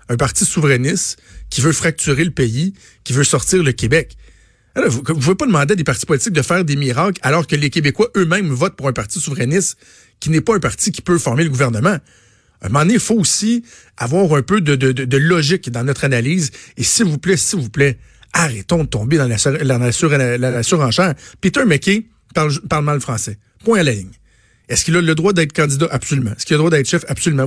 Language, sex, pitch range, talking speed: French, male, 130-170 Hz, 235 wpm